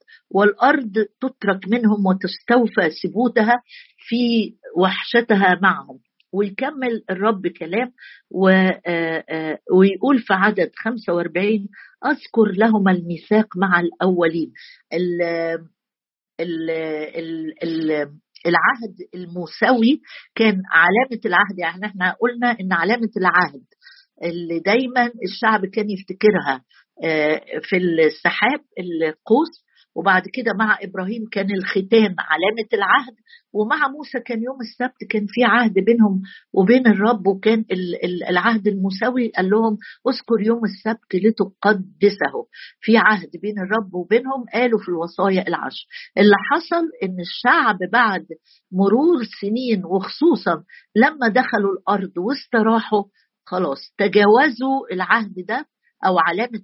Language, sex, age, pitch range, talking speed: Arabic, female, 50-69, 185-240 Hz, 100 wpm